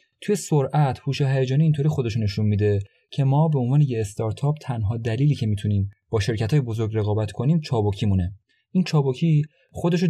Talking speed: 170 wpm